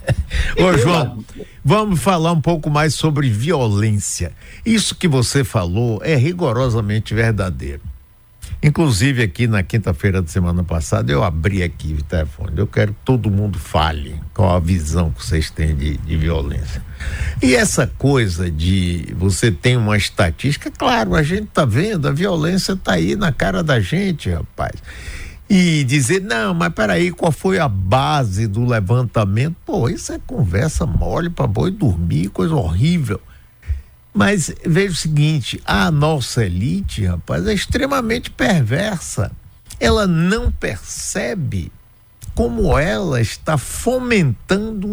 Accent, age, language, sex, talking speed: Brazilian, 60-79, Portuguese, male, 140 wpm